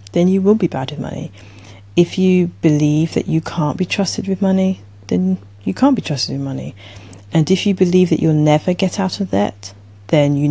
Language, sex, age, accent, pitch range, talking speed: English, female, 30-49, British, 105-170 Hz, 210 wpm